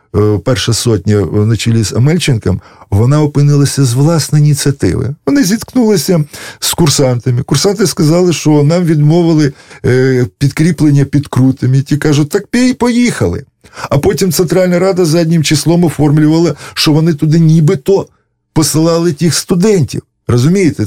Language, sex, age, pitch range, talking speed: Russian, male, 50-69, 110-160 Hz, 125 wpm